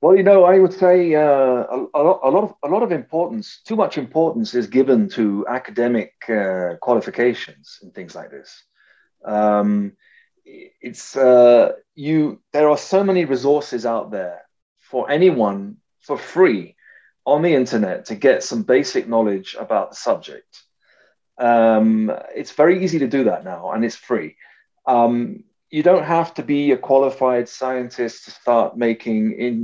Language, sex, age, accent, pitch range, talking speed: English, male, 30-49, British, 115-180 Hz, 160 wpm